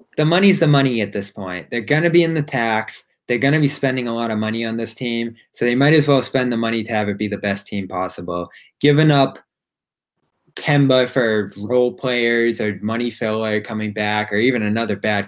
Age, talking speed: 20-39, 225 wpm